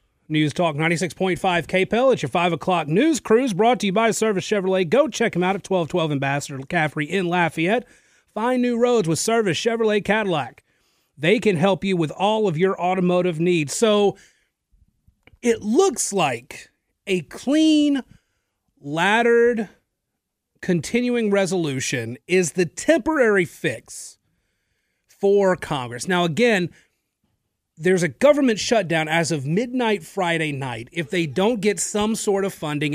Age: 30-49